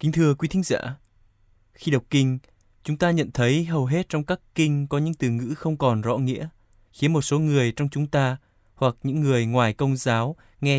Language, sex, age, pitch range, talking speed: Vietnamese, male, 20-39, 115-145 Hz, 215 wpm